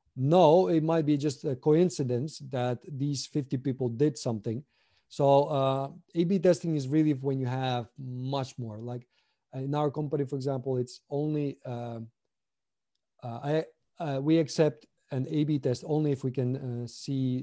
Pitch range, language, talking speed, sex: 125-150 Hz, English, 165 wpm, male